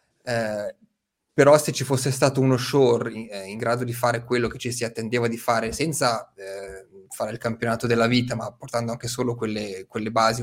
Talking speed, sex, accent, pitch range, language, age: 200 wpm, male, native, 115-125 Hz, Italian, 20-39